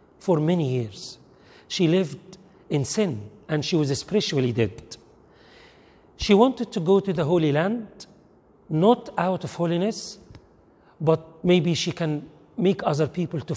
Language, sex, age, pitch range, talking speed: English, male, 40-59, 150-195 Hz, 140 wpm